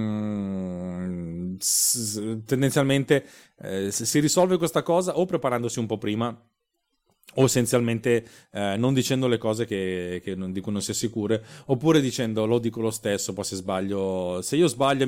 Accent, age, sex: native, 30-49, male